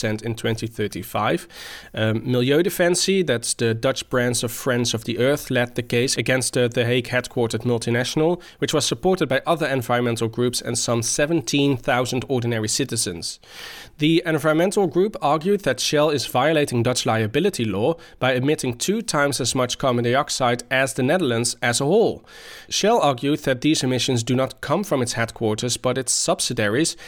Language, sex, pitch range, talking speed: English, male, 120-150 Hz, 160 wpm